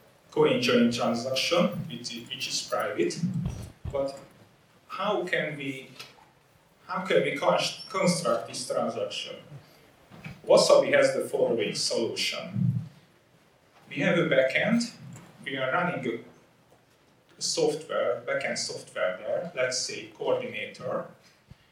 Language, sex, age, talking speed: English, male, 40-59, 100 wpm